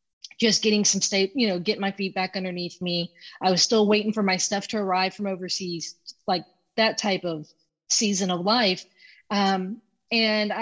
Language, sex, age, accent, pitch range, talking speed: English, female, 30-49, American, 185-220 Hz, 180 wpm